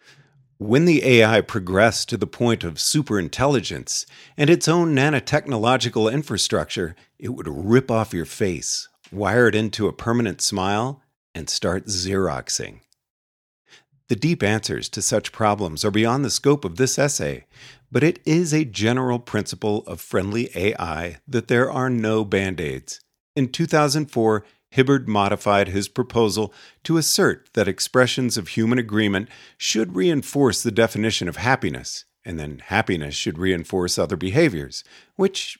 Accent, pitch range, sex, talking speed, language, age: American, 95-130 Hz, male, 140 wpm, English, 50-69